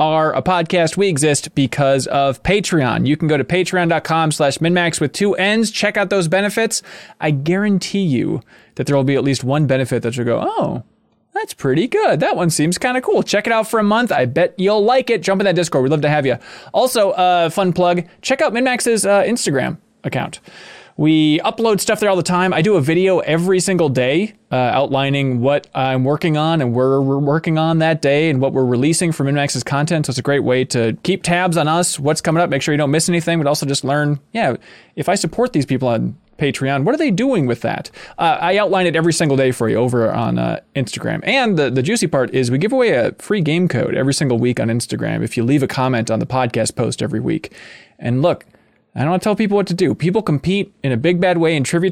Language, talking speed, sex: English, 240 wpm, male